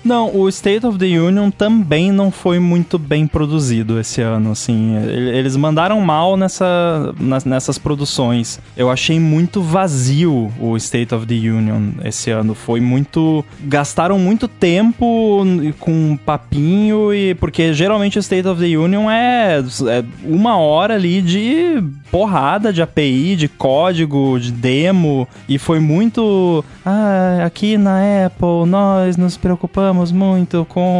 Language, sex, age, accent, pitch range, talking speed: Portuguese, male, 20-39, Brazilian, 125-185 Hz, 135 wpm